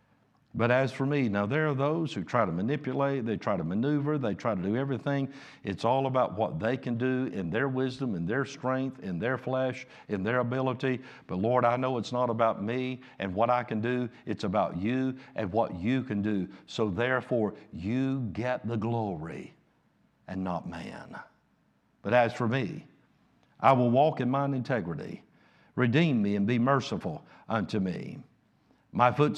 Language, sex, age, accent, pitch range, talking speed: English, male, 60-79, American, 110-135 Hz, 180 wpm